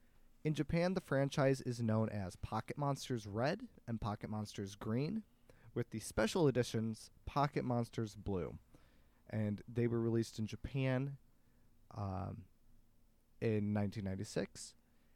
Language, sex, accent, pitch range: English, male, American, 105-135 Hz